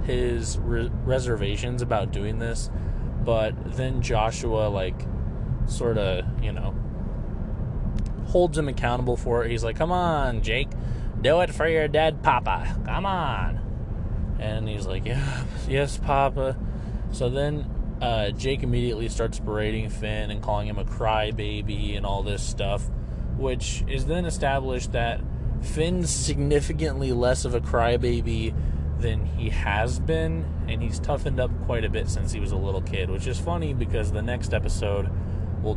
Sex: male